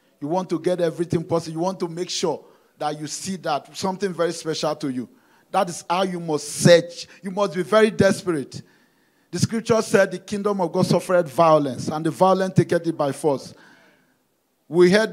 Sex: male